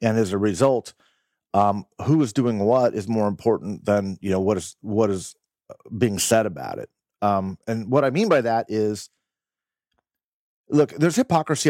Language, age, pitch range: English, 40-59, 105-135 Hz